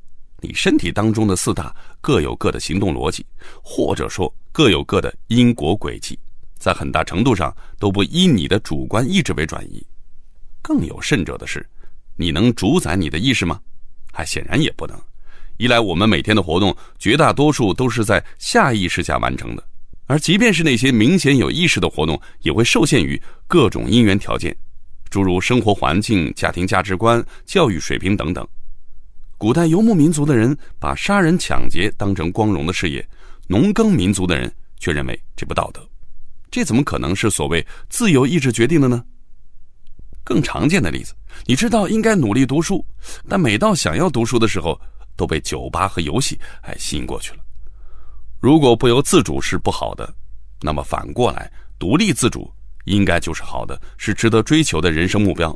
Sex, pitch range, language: male, 90-135 Hz, Chinese